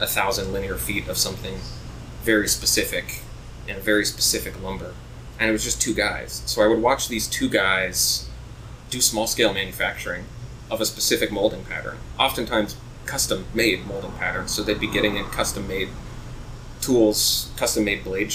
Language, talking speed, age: English, 155 wpm, 20-39